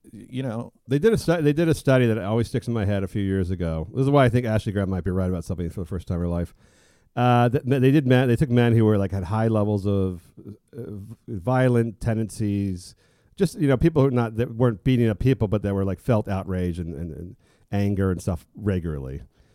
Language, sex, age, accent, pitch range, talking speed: English, male, 40-59, American, 95-120 Hz, 250 wpm